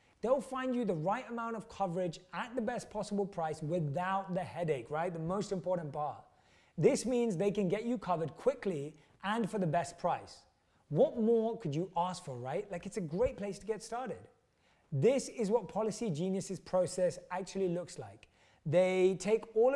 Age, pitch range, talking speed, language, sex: 20-39, 160-205 Hz, 185 wpm, English, male